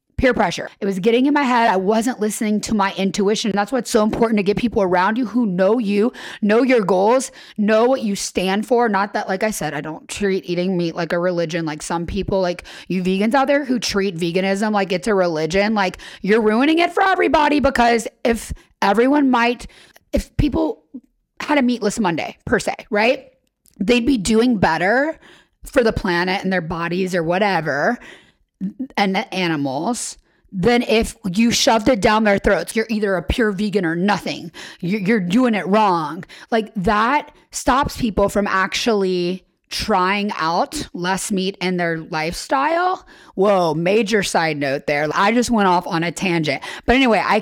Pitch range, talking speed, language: 185-245 Hz, 180 wpm, English